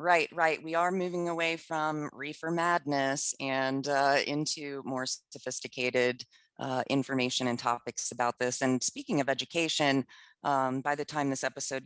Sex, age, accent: female, 30-49, American